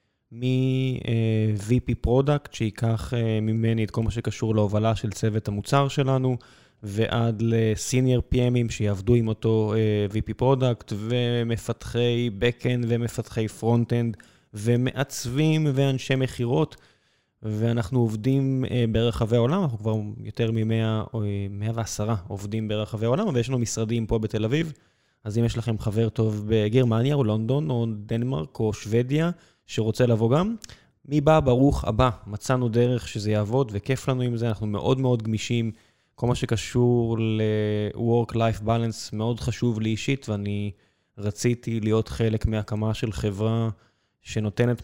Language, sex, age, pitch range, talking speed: Hebrew, male, 20-39, 110-125 Hz, 125 wpm